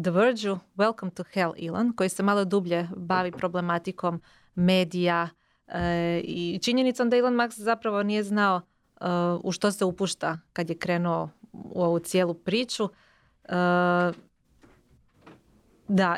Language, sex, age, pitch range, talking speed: Croatian, female, 30-49, 175-215 Hz, 130 wpm